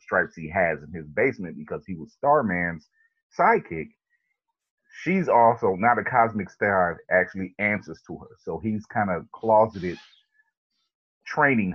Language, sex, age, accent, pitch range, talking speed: English, male, 30-49, American, 90-130 Hz, 140 wpm